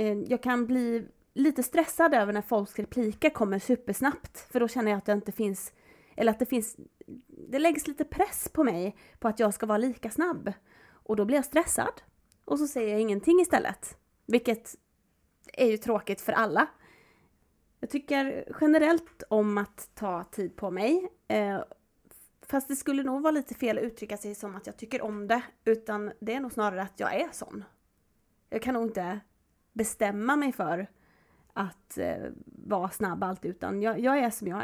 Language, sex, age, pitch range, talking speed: Swedish, female, 30-49, 210-270 Hz, 180 wpm